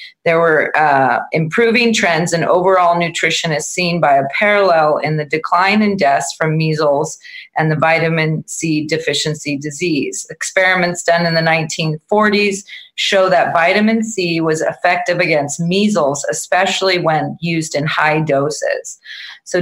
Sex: female